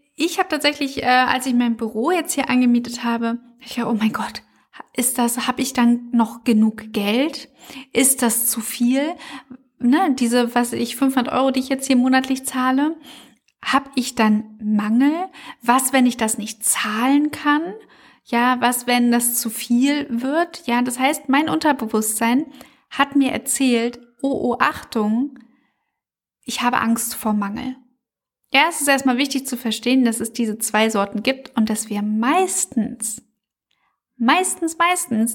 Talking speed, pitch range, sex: 160 wpm, 225-265 Hz, female